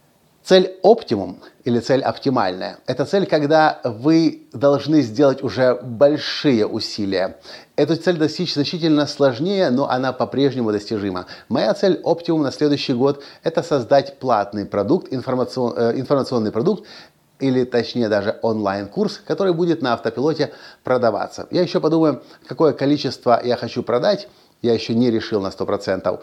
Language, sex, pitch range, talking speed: Russian, male, 115-155 Hz, 130 wpm